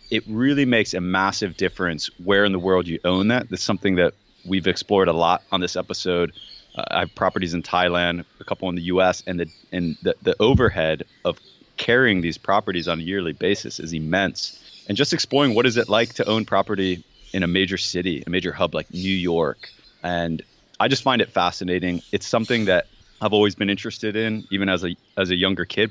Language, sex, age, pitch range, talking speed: English, male, 20-39, 90-100 Hz, 210 wpm